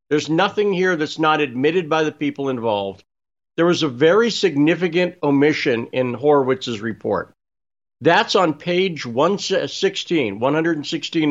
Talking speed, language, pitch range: 125 wpm, English, 135-170 Hz